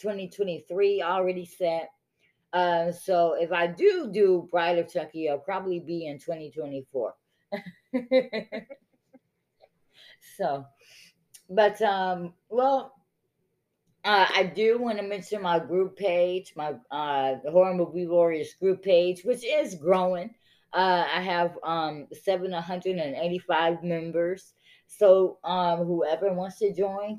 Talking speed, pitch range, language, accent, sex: 115 wpm, 165-200 Hz, English, American, female